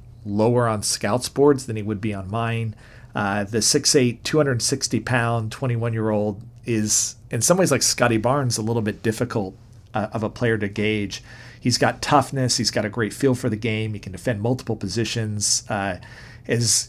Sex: male